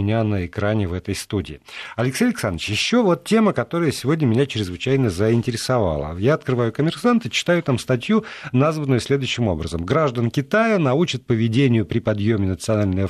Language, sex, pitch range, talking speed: Russian, male, 115-150 Hz, 150 wpm